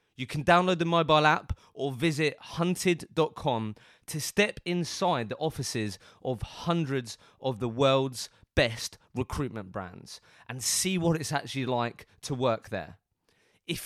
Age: 20-39